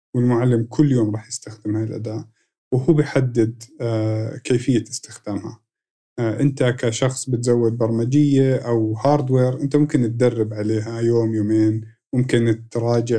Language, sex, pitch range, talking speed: Arabic, male, 115-140 Hz, 115 wpm